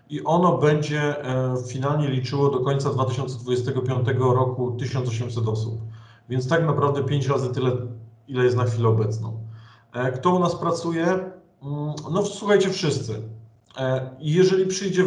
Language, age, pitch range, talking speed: Polish, 40-59, 125-160 Hz, 125 wpm